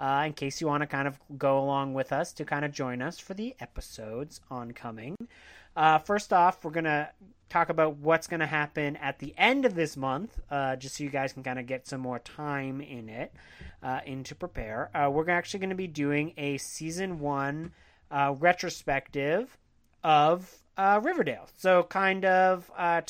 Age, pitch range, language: 30-49, 135-180 Hz, English